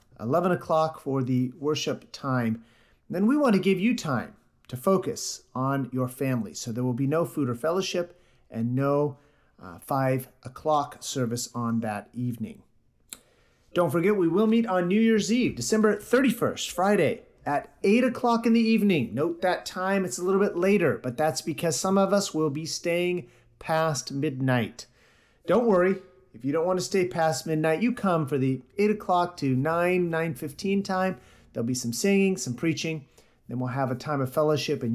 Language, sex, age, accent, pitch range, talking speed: English, male, 40-59, American, 130-190 Hz, 185 wpm